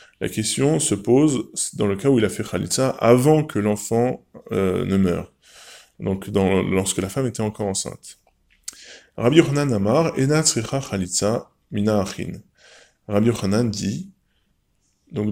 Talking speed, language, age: 120 wpm, French, 20-39